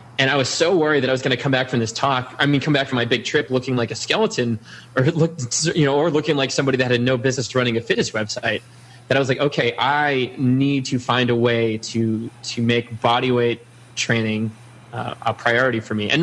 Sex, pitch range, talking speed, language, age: male, 115-140 Hz, 240 wpm, English, 20-39